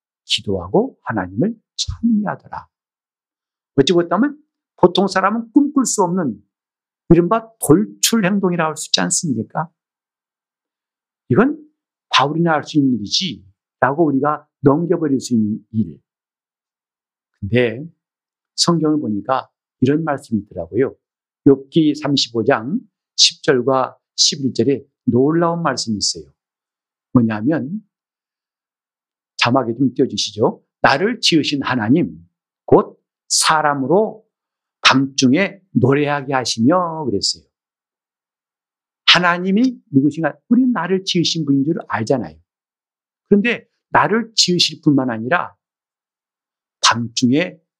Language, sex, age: Korean, male, 60-79